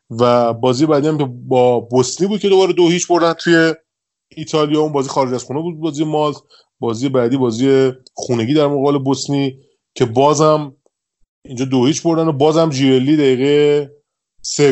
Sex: male